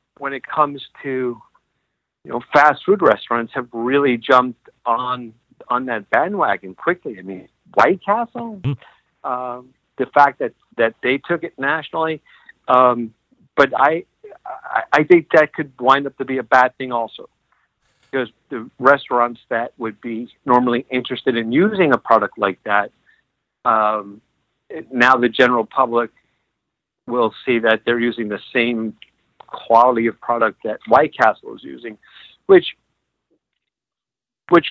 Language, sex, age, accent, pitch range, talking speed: English, male, 50-69, American, 115-140 Hz, 145 wpm